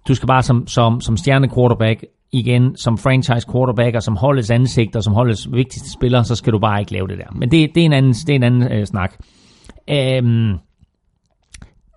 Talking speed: 200 wpm